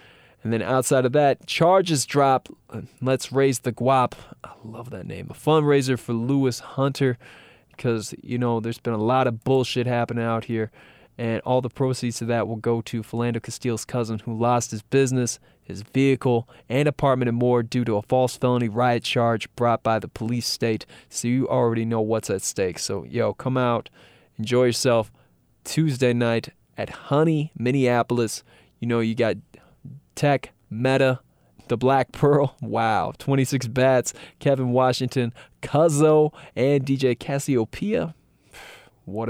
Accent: American